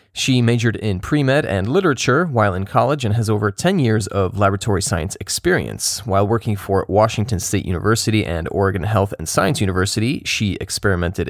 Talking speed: 170 wpm